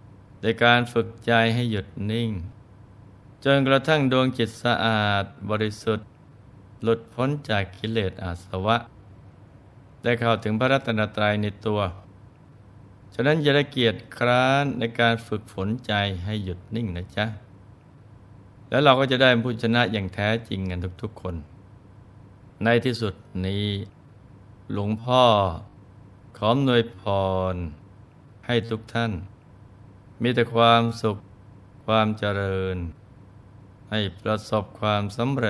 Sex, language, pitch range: male, Thai, 100-120 Hz